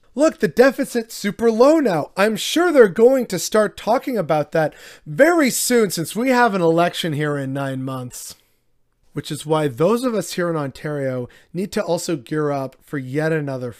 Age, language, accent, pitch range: 30-49, English, American, 140-195 Hz